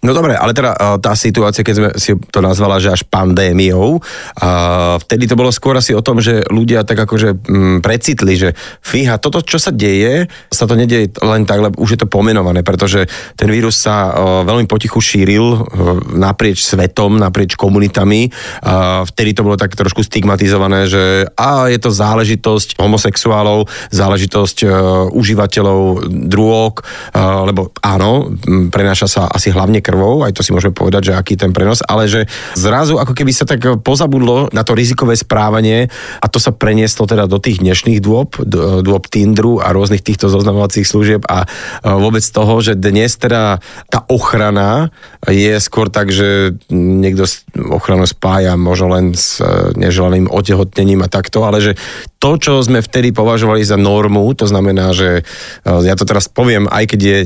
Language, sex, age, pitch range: Slovak, male, 30-49, 95-110 Hz